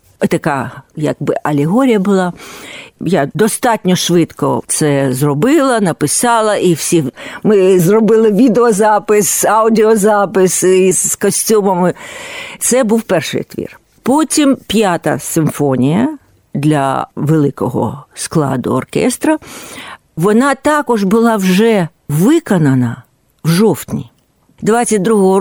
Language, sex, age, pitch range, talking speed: Ukrainian, female, 50-69, 145-225 Hz, 85 wpm